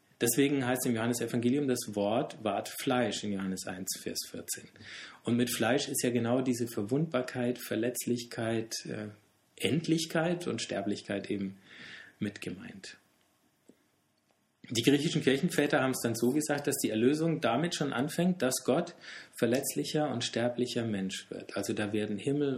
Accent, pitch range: German, 105-125 Hz